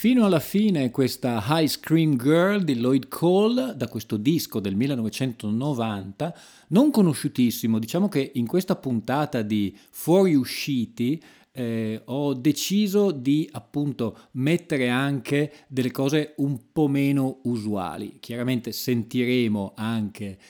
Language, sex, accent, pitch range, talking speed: Italian, male, native, 110-150 Hz, 115 wpm